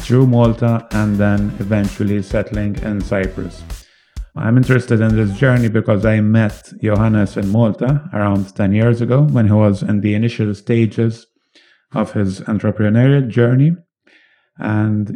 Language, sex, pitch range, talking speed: English, male, 100-115 Hz, 140 wpm